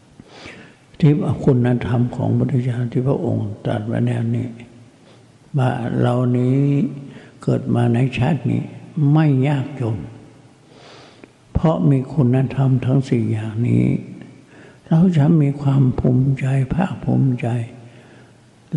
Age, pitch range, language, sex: 60-79, 120-155 Hz, Thai, male